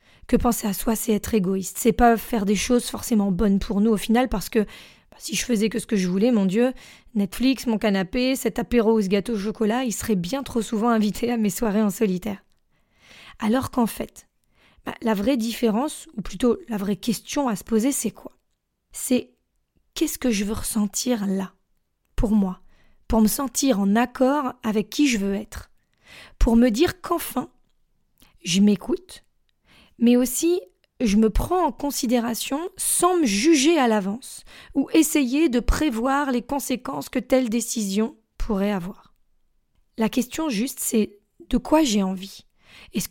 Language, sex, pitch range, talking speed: French, female, 210-260 Hz, 175 wpm